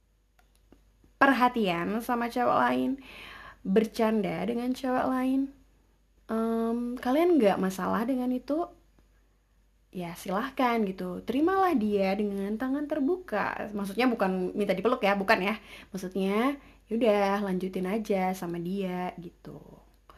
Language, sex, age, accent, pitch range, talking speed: English, female, 20-39, Indonesian, 185-250 Hz, 105 wpm